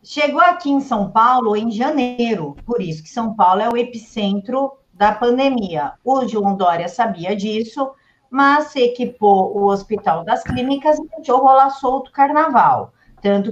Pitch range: 200-260 Hz